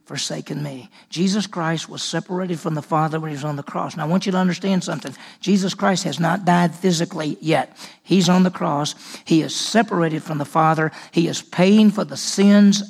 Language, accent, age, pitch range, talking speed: English, American, 50-69, 160-185 Hz, 210 wpm